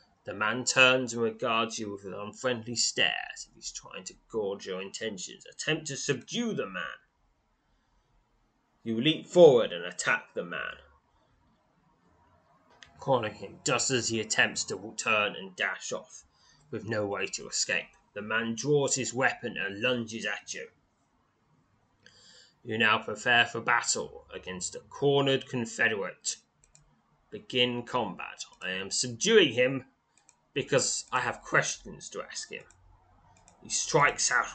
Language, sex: English, male